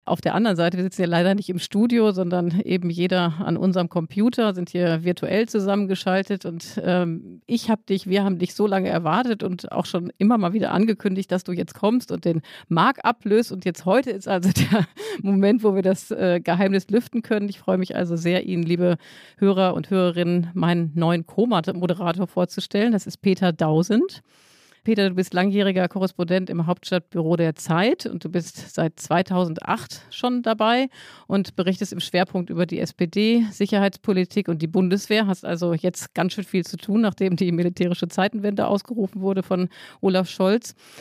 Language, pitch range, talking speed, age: German, 175-205 Hz, 180 wpm, 40-59